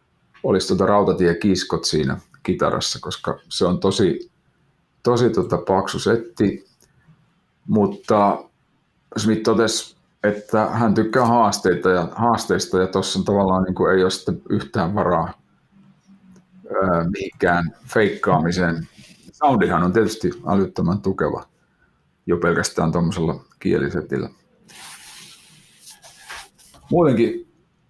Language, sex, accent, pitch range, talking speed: Finnish, male, native, 95-120 Hz, 95 wpm